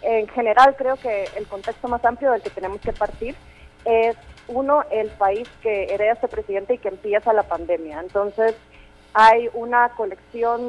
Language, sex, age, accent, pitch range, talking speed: Spanish, female, 30-49, Mexican, 185-225 Hz, 170 wpm